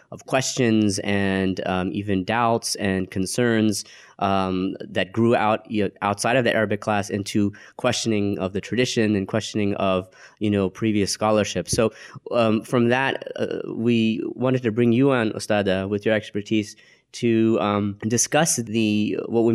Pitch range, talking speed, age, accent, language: 100-115 Hz, 160 wpm, 20-39, American, English